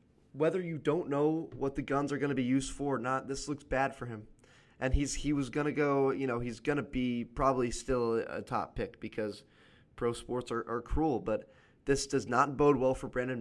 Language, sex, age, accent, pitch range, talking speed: English, male, 20-39, American, 120-145 Hz, 235 wpm